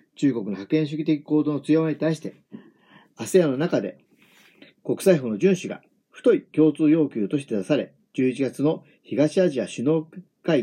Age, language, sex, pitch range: 50-69, Japanese, male, 140-180 Hz